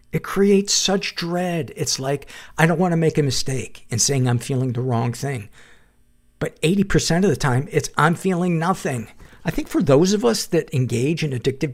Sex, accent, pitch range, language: male, American, 115-150 Hz, English